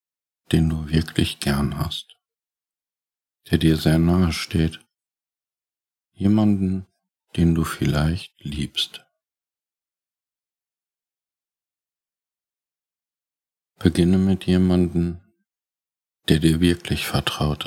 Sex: male